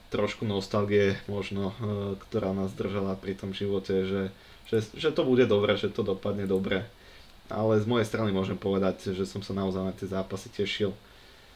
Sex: male